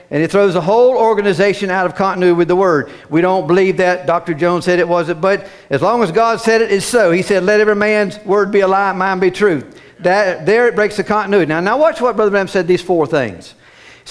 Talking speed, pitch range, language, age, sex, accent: 255 wpm, 175-235 Hz, English, 50-69, male, American